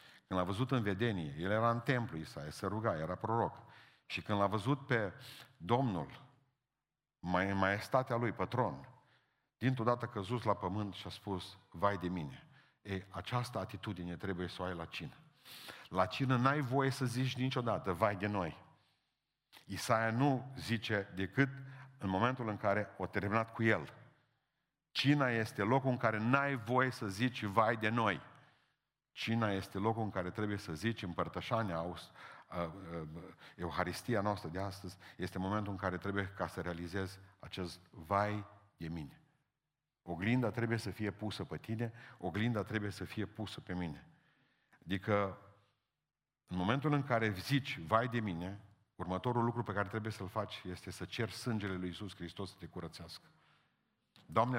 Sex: male